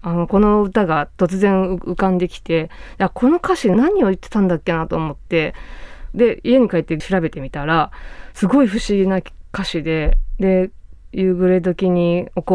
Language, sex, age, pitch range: Japanese, female, 20-39, 165-220 Hz